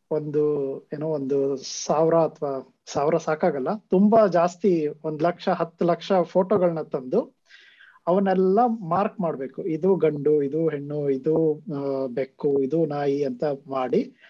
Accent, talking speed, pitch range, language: native, 120 wpm, 155-200 Hz, Kannada